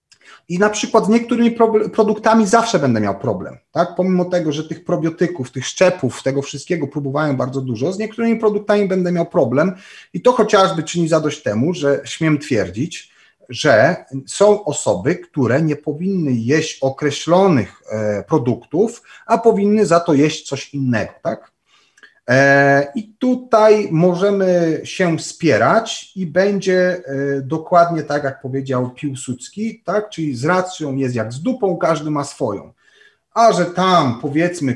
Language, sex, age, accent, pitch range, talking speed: Polish, male, 30-49, native, 140-190 Hz, 140 wpm